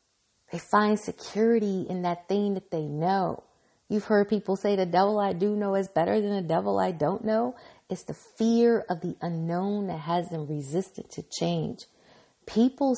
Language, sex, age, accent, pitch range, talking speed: English, female, 40-59, American, 175-210 Hz, 180 wpm